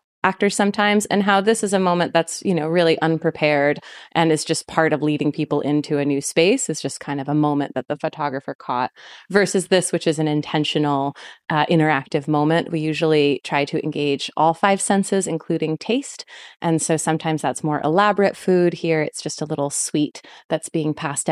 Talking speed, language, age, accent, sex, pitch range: 195 wpm, English, 30-49, American, female, 155-185 Hz